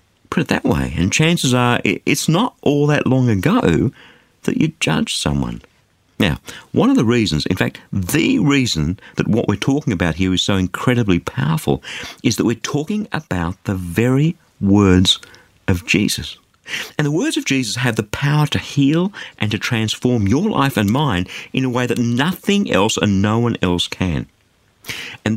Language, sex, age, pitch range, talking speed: English, male, 50-69, 95-145 Hz, 175 wpm